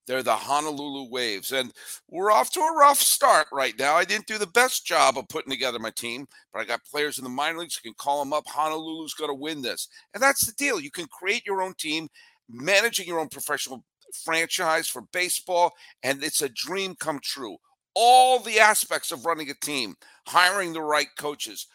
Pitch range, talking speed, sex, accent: 145-210 Hz, 210 wpm, male, American